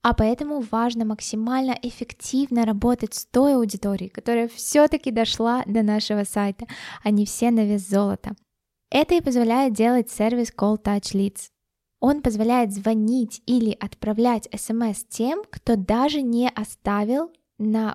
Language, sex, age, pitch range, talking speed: Russian, female, 10-29, 205-240 Hz, 135 wpm